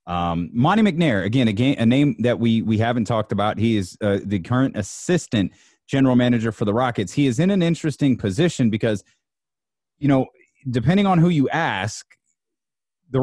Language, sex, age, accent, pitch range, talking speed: English, male, 30-49, American, 90-130 Hz, 175 wpm